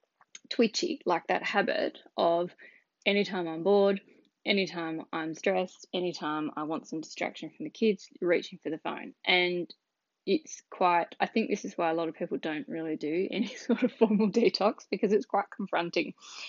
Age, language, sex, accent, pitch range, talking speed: 10-29, English, female, Australian, 165-220 Hz, 170 wpm